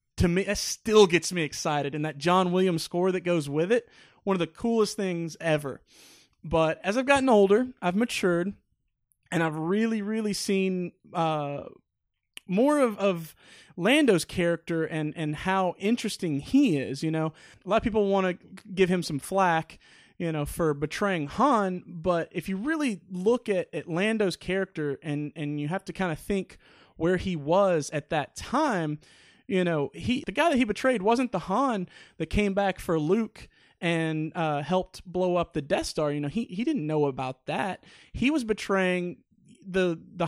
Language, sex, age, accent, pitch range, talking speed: English, male, 30-49, American, 165-205 Hz, 185 wpm